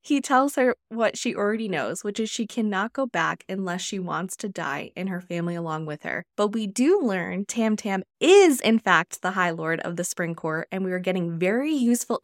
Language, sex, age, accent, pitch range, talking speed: English, female, 10-29, American, 175-225 Hz, 220 wpm